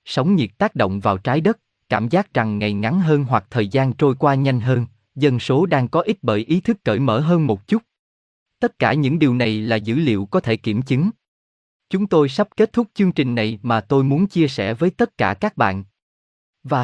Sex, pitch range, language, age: male, 115-160 Hz, Vietnamese, 20-39